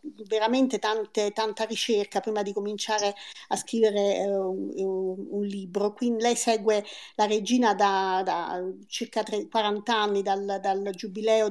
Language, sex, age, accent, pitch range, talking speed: Italian, female, 40-59, native, 200-235 Hz, 140 wpm